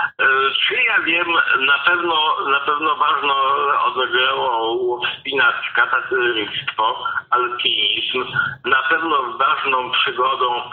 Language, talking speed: Polish, 90 wpm